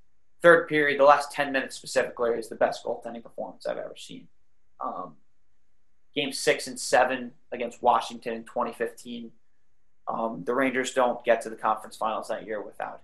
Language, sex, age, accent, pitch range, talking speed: English, male, 20-39, American, 115-135 Hz, 165 wpm